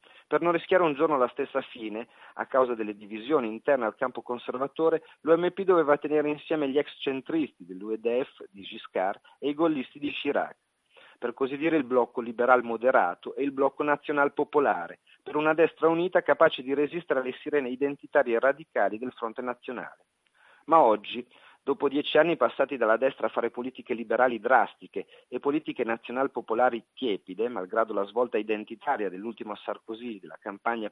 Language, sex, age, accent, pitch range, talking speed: Italian, male, 40-59, native, 120-155 Hz, 160 wpm